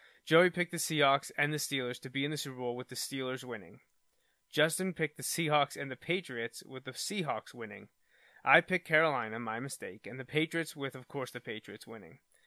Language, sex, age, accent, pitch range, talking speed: English, male, 20-39, American, 125-155 Hz, 200 wpm